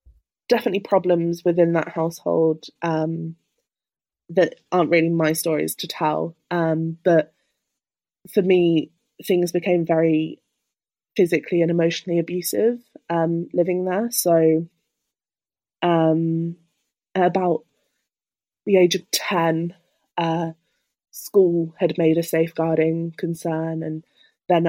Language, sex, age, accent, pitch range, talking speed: English, female, 20-39, British, 165-180 Hz, 105 wpm